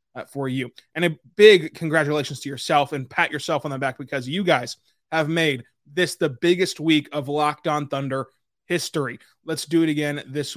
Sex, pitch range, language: male, 140-180 Hz, English